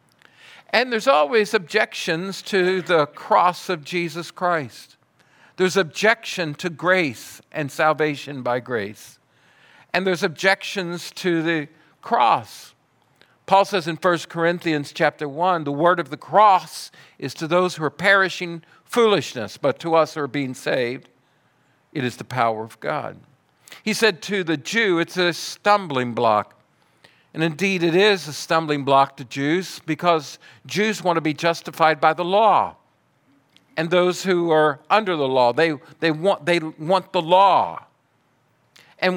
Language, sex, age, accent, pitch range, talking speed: English, male, 50-69, American, 145-185 Hz, 150 wpm